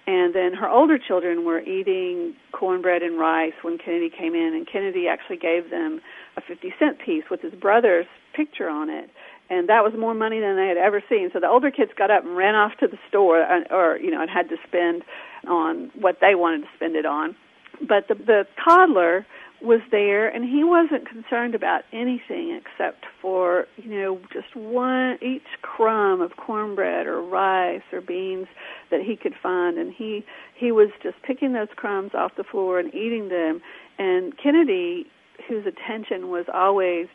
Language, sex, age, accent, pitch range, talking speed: English, female, 50-69, American, 180-275 Hz, 185 wpm